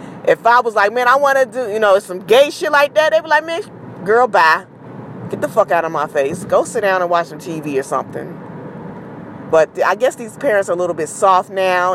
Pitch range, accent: 180-255 Hz, American